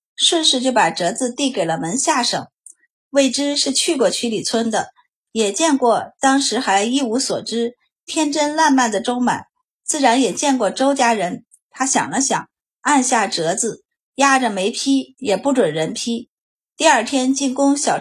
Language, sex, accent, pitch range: Chinese, female, native, 230-285 Hz